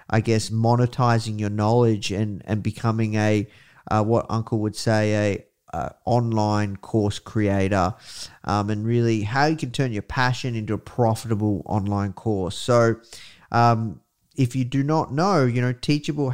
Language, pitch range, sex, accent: English, 110-130 Hz, male, Australian